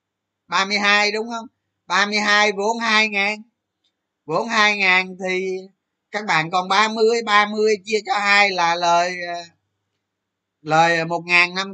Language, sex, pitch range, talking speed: Vietnamese, male, 145-210 Hz, 125 wpm